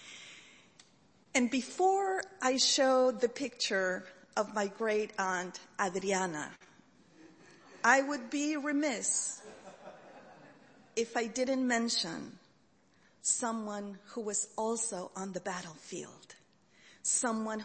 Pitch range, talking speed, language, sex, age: 200-255 Hz, 90 wpm, English, female, 40-59